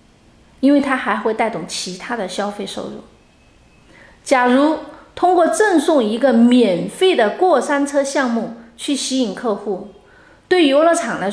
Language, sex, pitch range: Chinese, female, 225-305 Hz